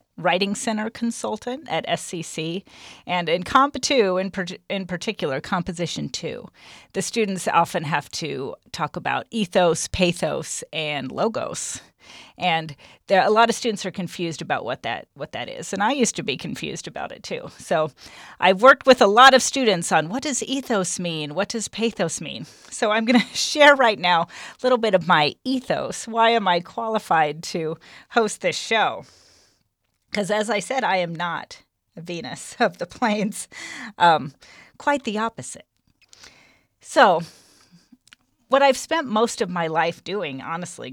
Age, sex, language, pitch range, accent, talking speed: 40-59, female, English, 170-230 Hz, American, 165 wpm